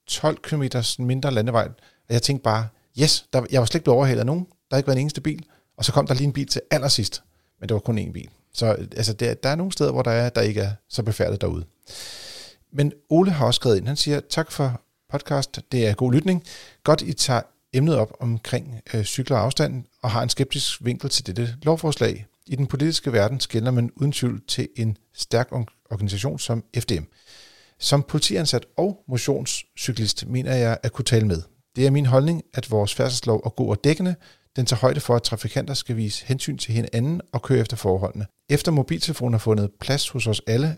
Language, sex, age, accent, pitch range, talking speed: Danish, male, 40-59, native, 115-145 Hz, 215 wpm